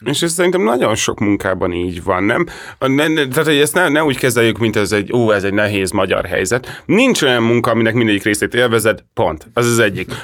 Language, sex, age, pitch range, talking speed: Hungarian, male, 30-49, 105-145 Hz, 215 wpm